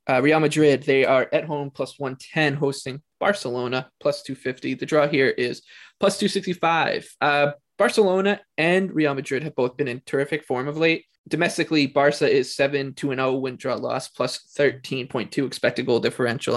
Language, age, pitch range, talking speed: English, 20-39, 140-170 Hz, 170 wpm